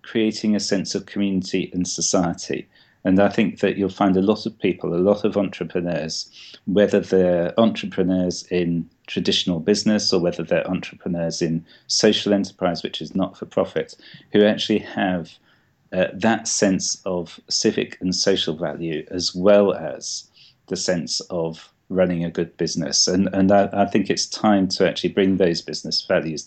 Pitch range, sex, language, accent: 85-105 Hz, male, English, British